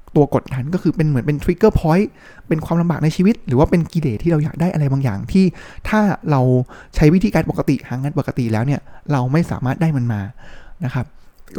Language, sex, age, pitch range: Thai, male, 20-39, 135-175 Hz